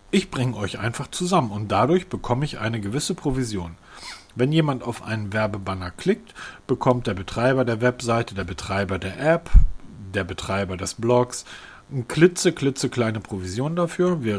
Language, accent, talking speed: German, German, 160 wpm